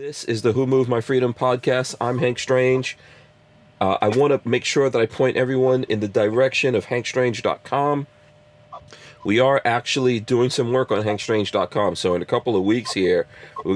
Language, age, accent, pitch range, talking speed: English, 40-59, American, 95-130 Hz, 185 wpm